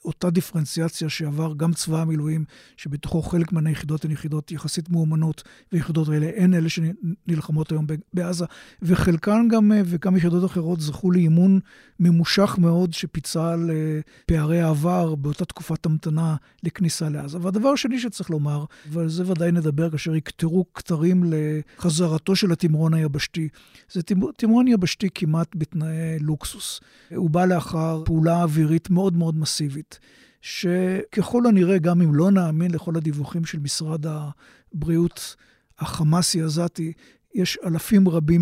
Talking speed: 130 wpm